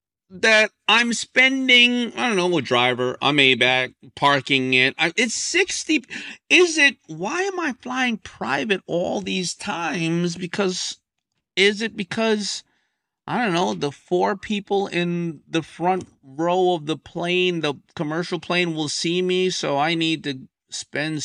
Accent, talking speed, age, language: American, 155 wpm, 40-59, English